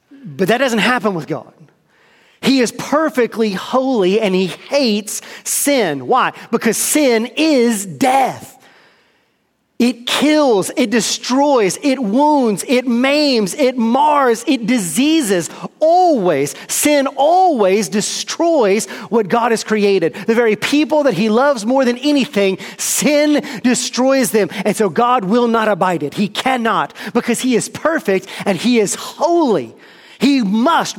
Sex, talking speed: male, 135 wpm